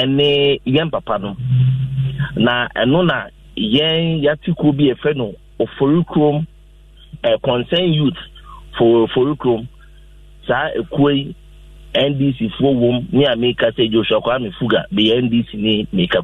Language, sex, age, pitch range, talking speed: English, male, 50-69, 125-165 Hz, 120 wpm